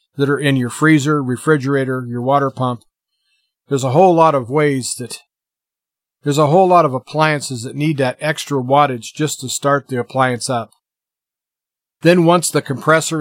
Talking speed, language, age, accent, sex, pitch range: 170 wpm, English, 40-59, American, male, 130-155 Hz